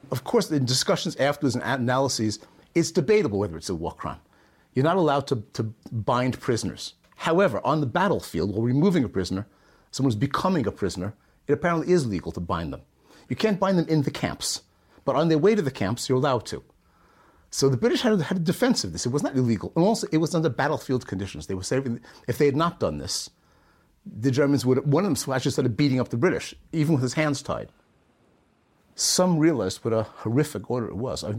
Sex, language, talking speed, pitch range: male, English, 220 wpm, 110-145 Hz